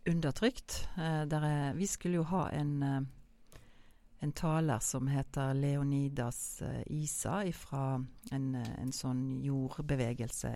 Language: English